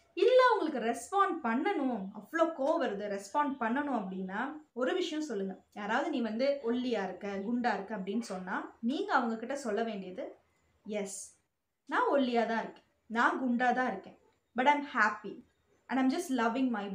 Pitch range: 225-295 Hz